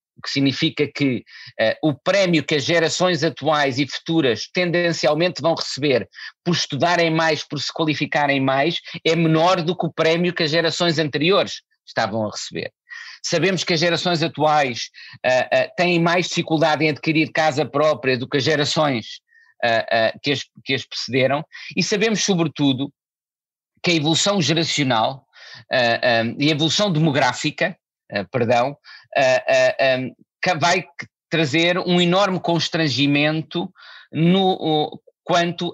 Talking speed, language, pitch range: 135 wpm, Portuguese, 150-190 Hz